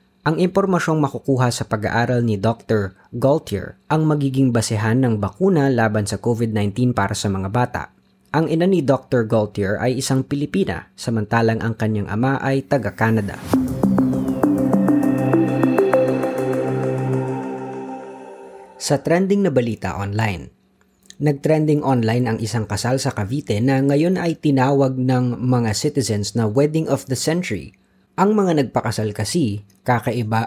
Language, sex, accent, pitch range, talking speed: Filipino, female, native, 110-140 Hz, 125 wpm